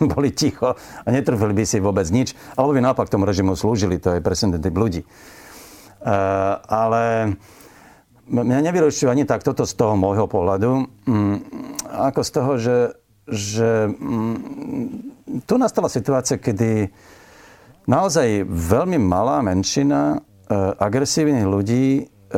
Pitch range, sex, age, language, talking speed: 105-135 Hz, male, 50-69, Slovak, 115 wpm